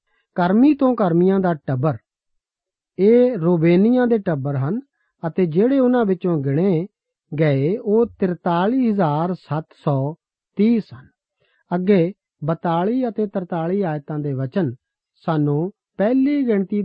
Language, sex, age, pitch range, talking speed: Punjabi, male, 50-69, 150-200 Hz, 70 wpm